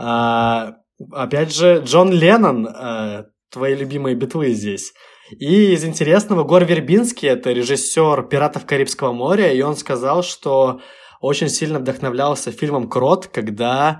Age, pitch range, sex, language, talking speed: 20-39, 115-145 Hz, male, Russian, 120 wpm